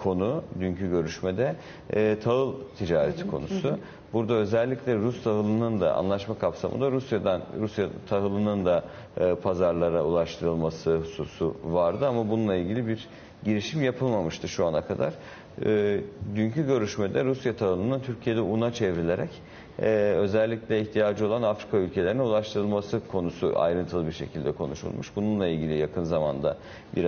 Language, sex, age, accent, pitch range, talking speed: Turkish, male, 50-69, native, 90-115 Hz, 125 wpm